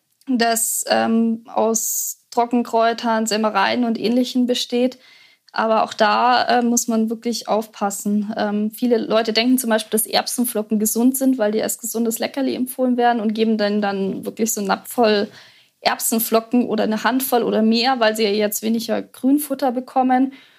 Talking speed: 160 wpm